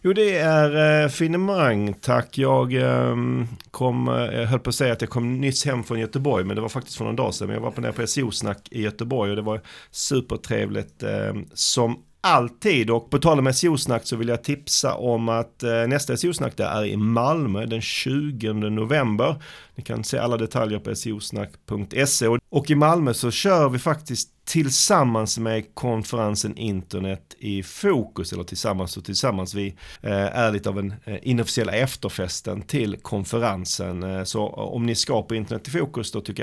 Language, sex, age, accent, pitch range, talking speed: Swedish, male, 40-59, native, 105-135 Hz, 175 wpm